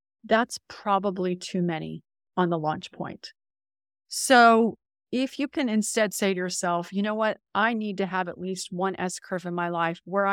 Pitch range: 180-225 Hz